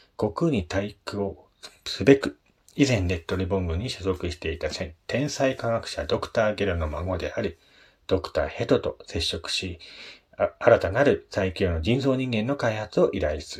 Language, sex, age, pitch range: Japanese, male, 40-59, 90-120 Hz